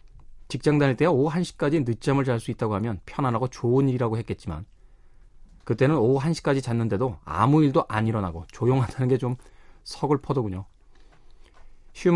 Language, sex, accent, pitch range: Korean, male, native, 115-160 Hz